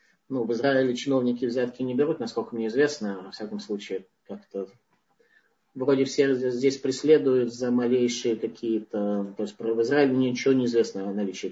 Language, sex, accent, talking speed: Russian, male, native, 150 wpm